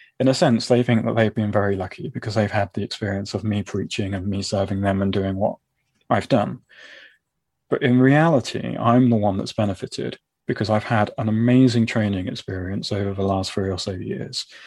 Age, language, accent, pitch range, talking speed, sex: 20-39, English, British, 100-125 Hz, 200 wpm, male